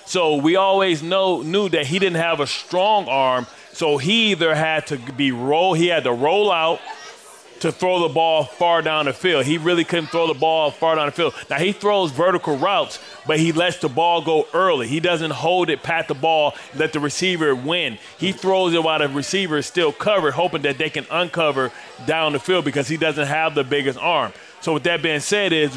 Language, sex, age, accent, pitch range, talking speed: English, male, 30-49, American, 150-175 Hz, 220 wpm